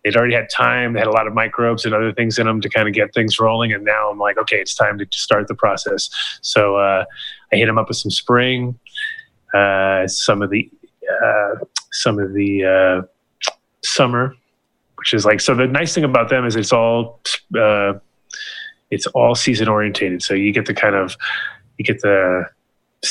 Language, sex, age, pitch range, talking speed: English, male, 30-49, 105-125 Hz, 200 wpm